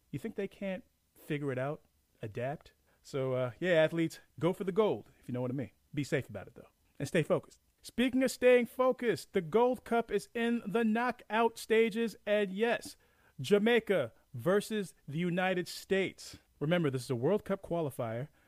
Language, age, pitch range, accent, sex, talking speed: English, 40-59, 145-235 Hz, American, male, 180 wpm